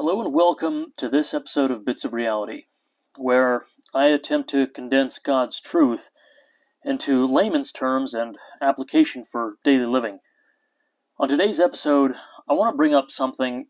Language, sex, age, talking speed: English, male, 30-49, 150 wpm